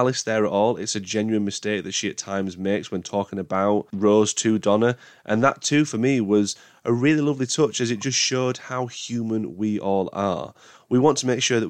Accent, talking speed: British, 225 wpm